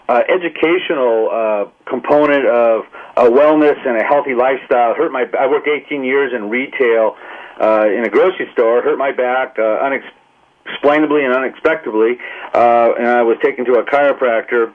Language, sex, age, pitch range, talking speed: English, male, 40-59, 120-145 Hz, 160 wpm